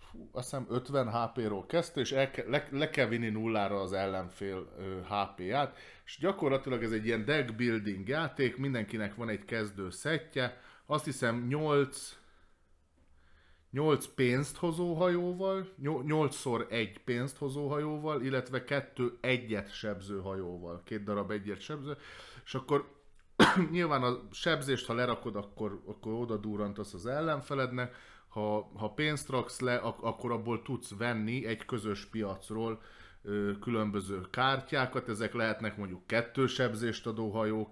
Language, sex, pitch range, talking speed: Hungarian, male, 105-135 Hz, 125 wpm